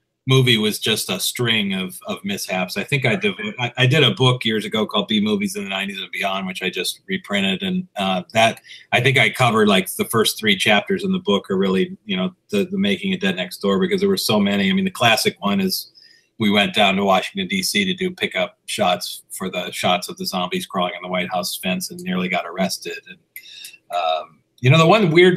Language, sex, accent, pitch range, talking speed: English, male, American, 120-195 Hz, 235 wpm